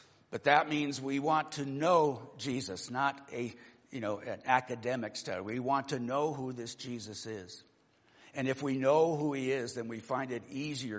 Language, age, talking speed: English, 60-79, 190 wpm